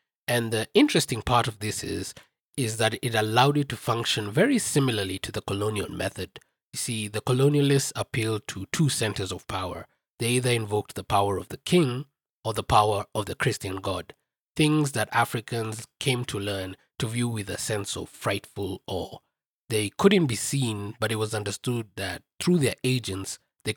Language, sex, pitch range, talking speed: English, male, 100-130 Hz, 180 wpm